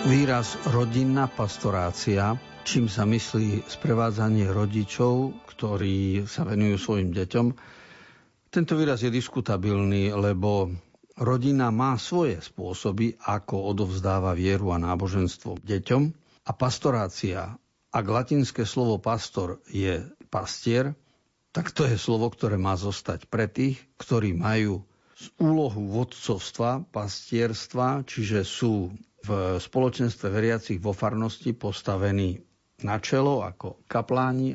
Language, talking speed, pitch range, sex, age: Slovak, 110 wpm, 100-125 Hz, male, 50-69